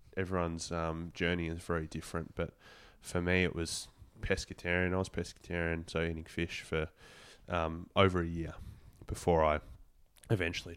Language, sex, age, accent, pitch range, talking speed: English, male, 20-39, Australian, 80-95 Hz, 145 wpm